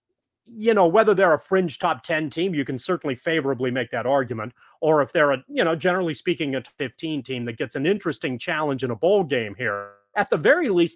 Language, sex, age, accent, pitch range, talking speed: English, male, 30-49, American, 135-175 Hz, 230 wpm